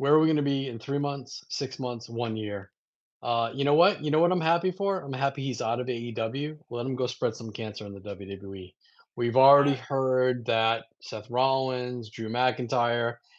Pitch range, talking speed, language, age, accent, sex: 115-140 Hz, 205 wpm, English, 30-49, American, male